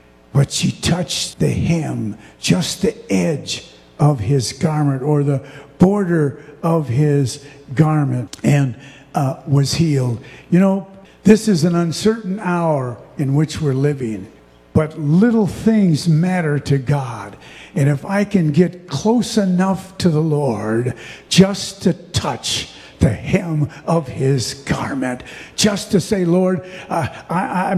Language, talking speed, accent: English, 135 wpm, American